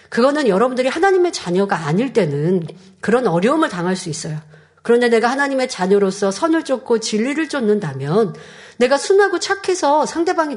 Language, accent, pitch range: Korean, native, 180-260 Hz